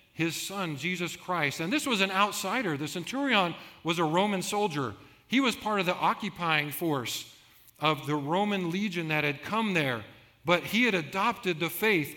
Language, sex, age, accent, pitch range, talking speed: English, male, 50-69, American, 150-190 Hz, 180 wpm